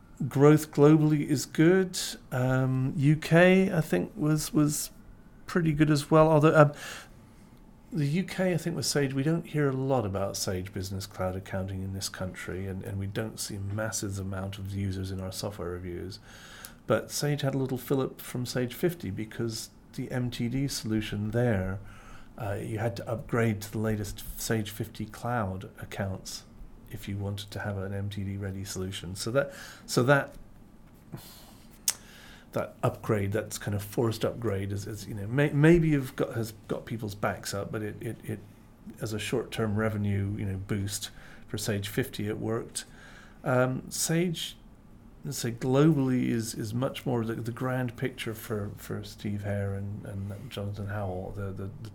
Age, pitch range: 40-59, 100-130 Hz